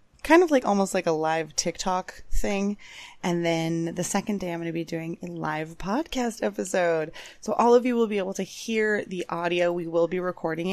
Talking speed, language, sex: 215 wpm, English, female